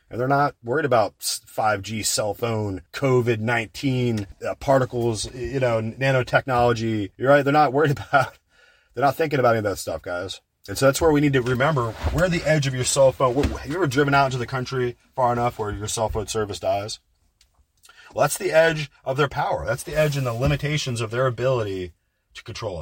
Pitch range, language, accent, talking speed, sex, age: 115-140 Hz, English, American, 205 wpm, male, 30-49